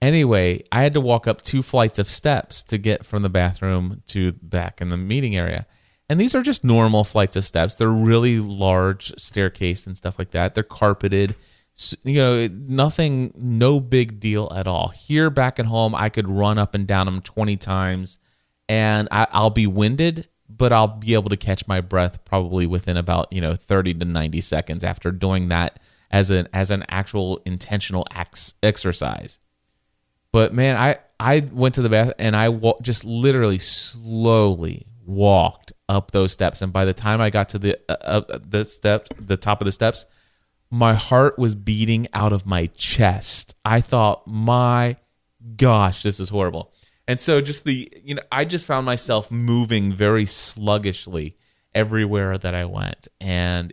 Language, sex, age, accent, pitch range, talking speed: English, male, 30-49, American, 95-120 Hz, 180 wpm